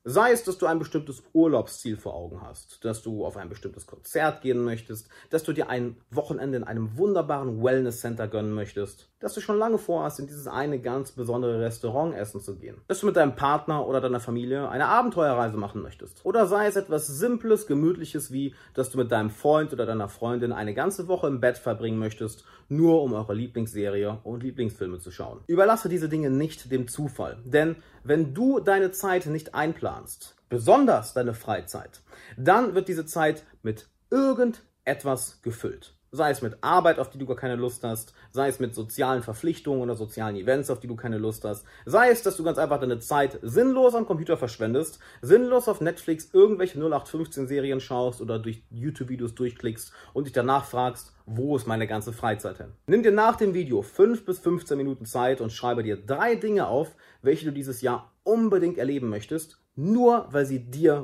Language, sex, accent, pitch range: German, male, German, 115-165 Hz